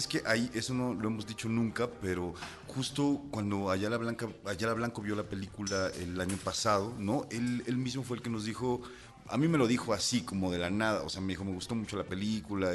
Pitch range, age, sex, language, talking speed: 90-115 Hz, 40-59, male, Spanish, 235 wpm